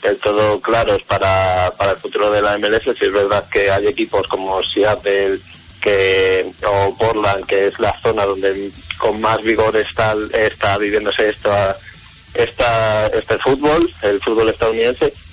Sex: male